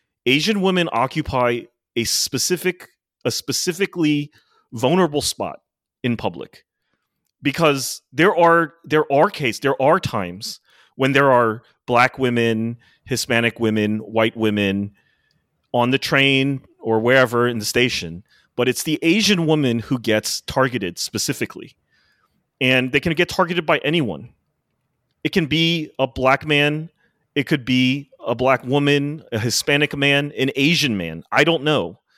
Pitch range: 115-150 Hz